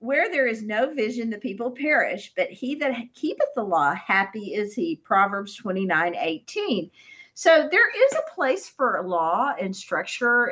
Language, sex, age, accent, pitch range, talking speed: English, female, 50-69, American, 155-230 Hz, 165 wpm